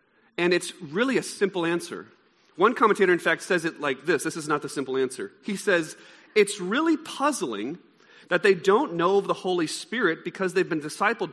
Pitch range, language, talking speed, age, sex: 170-235 Hz, English, 195 wpm, 40-59, male